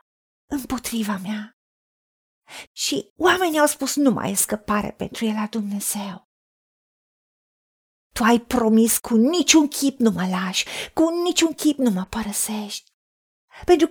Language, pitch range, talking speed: Romanian, 220-295 Hz, 130 wpm